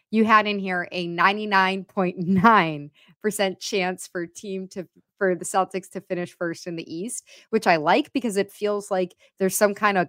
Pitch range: 185-225 Hz